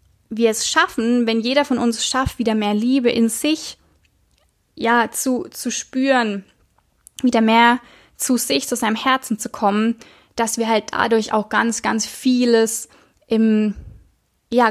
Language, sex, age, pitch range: German, female, 20-39, 220-260 Hz